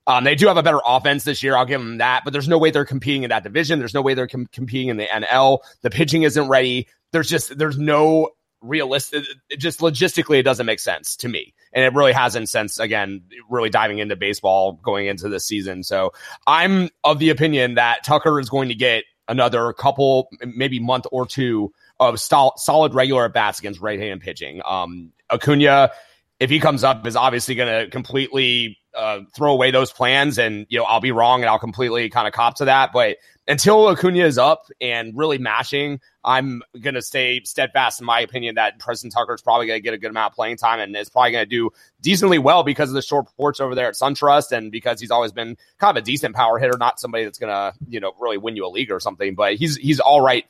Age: 30-49